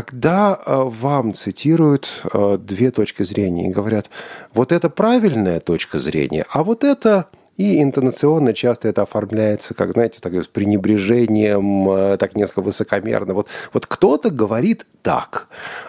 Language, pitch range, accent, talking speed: Russian, 95-140 Hz, native, 125 wpm